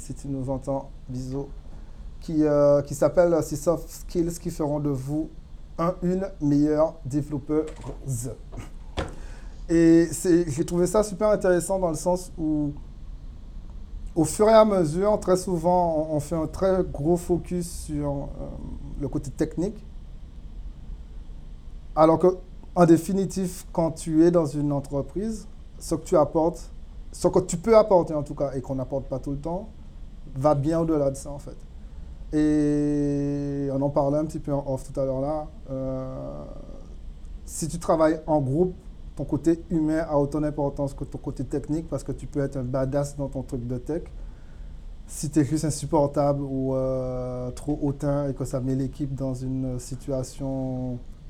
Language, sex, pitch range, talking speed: French, male, 125-160 Hz, 165 wpm